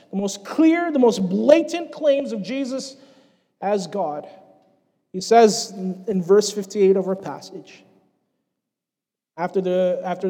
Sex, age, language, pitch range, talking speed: male, 30-49, English, 175-235 Hz, 130 wpm